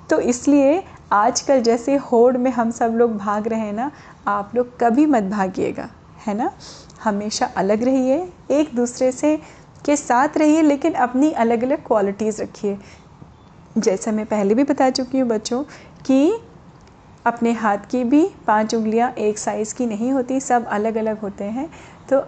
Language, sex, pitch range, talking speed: Hindi, female, 220-285 Hz, 165 wpm